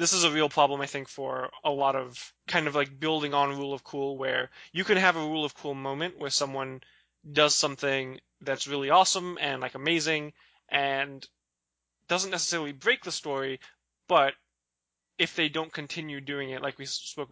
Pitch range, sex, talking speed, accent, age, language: 130-150 Hz, male, 185 wpm, American, 20-39, English